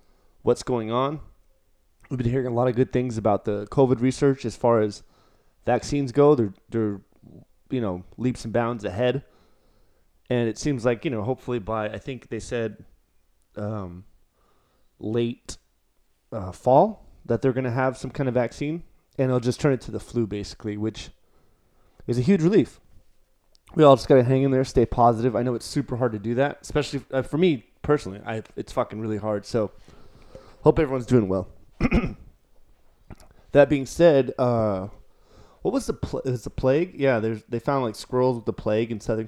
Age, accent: 20-39, American